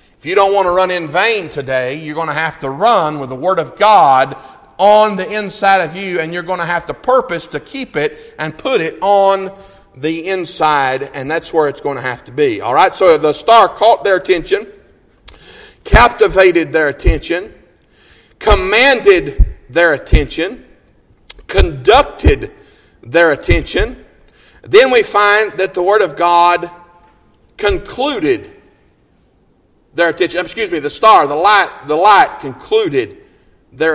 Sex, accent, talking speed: male, American, 155 wpm